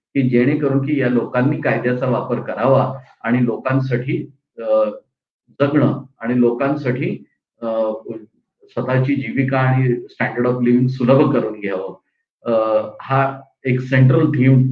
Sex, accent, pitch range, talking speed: male, native, 120-145 Hz, 65 wpm